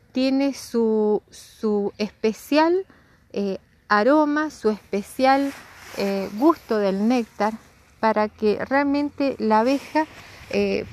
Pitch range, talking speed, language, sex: 205-270 Hz, 100 wpm, Spanish, female